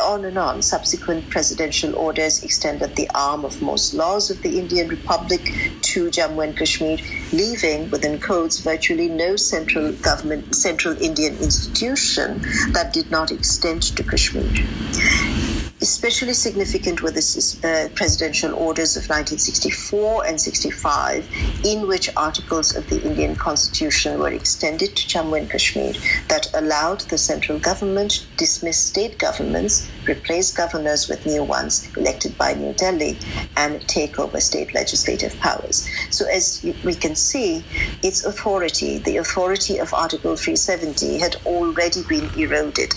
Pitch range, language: 160-205 Hz, English